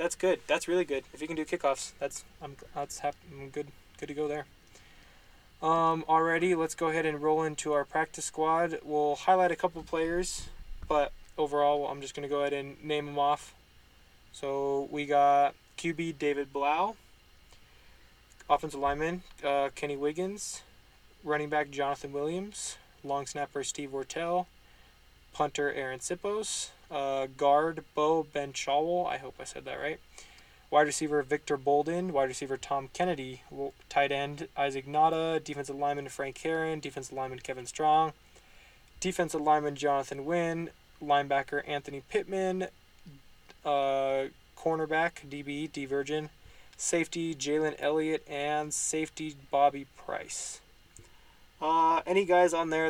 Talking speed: 140 wpm